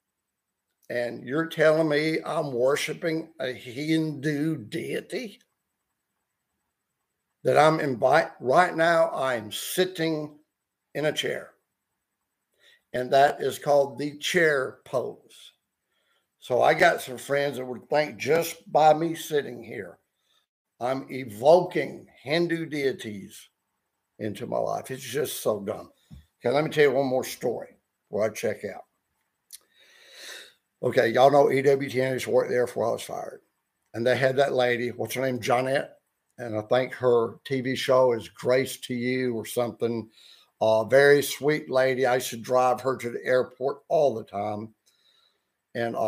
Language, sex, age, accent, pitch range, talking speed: English, male, 60-79, American, 120-145 Hz, 145 wpm